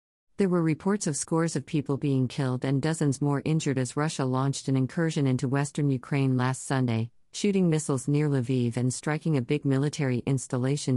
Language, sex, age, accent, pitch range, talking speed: English, female, 50-69, American, 130-155 Hz, 180 wpm